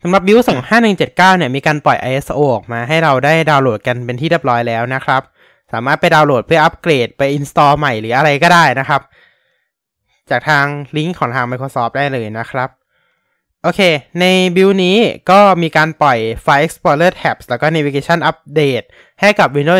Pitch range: 125-170 Hz